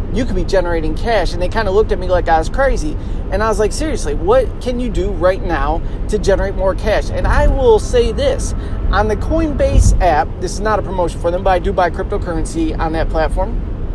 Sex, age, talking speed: male, 30-49, 235 wpm